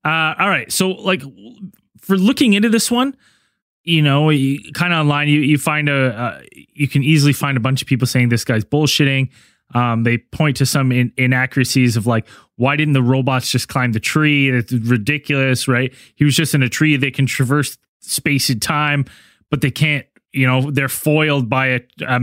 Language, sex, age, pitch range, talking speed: English, male, 20-39, 125-155 Hz, 200 wpm